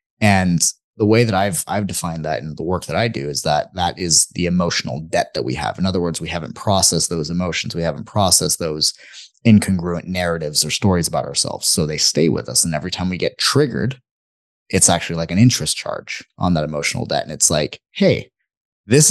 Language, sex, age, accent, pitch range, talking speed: English, male, 30-49, American, 85-110 Hz, 215 wpm